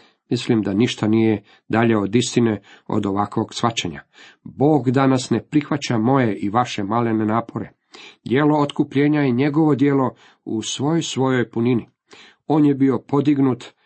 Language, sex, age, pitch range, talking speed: Croatian, male, 40-59, 110-135 Hz, 140 wpm